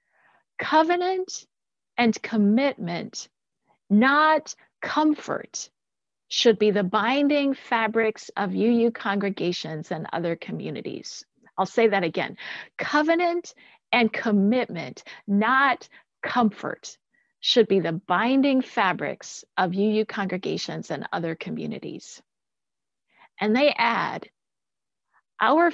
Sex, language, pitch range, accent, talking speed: female, English, 205-295 Hz, American, 95 wpm